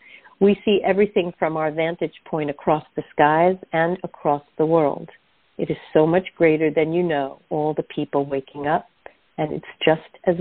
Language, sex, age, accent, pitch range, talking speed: English, female, 50-69, American, 150-190 Hz, 180 wpm